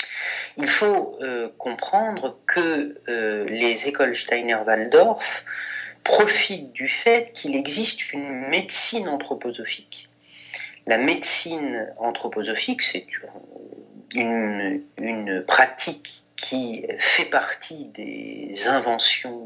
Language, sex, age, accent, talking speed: French, male, 40-59, French, 90 wpm